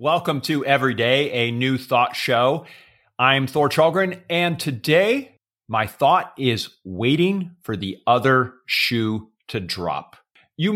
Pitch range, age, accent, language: 115-150 Hz, 40-59, American, English